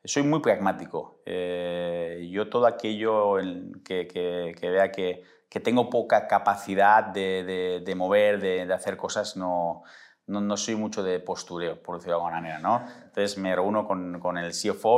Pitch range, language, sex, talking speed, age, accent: 90-105 Hz, Spanish, male, 175 wpm, 30-49, Spanish